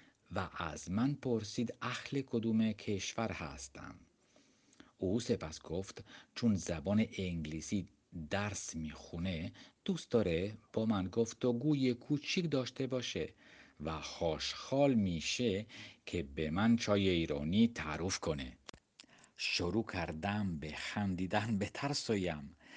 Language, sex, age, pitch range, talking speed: Persian, male, 50-69, 85-115 Hz, 110 wpm